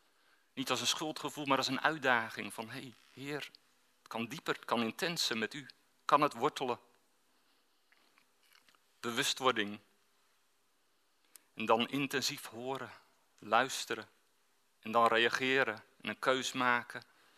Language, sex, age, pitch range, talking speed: Dutch, male, 40-59, 120-140 Hz, 125 wpm